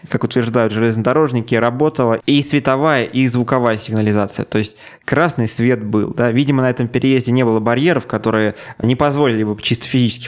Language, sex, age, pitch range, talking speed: Russian, male, 20-39, 110-130 Hz, 165 wpm